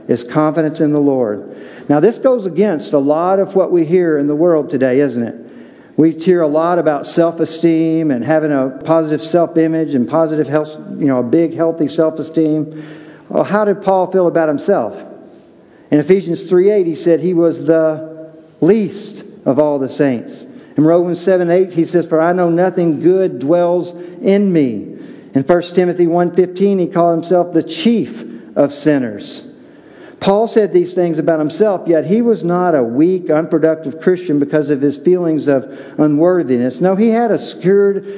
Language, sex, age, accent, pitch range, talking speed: English, male, 50-69, American, 150-185 Hz, 175 wpm